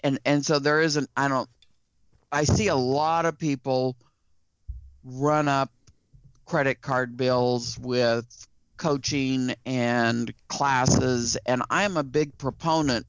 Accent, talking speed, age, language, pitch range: American, 135 wpm, 50-69, English, 125-150 Hz